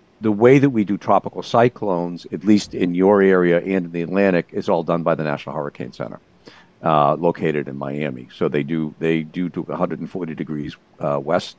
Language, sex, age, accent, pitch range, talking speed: English, male, 60-79, American, 80-90 Hz, 195 wpm